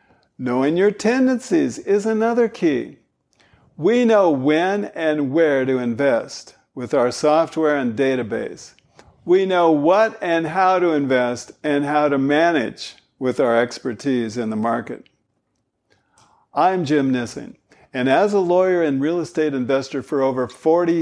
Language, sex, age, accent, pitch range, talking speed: English, male, 50-69, American, 135-190 Hz, 140 wpm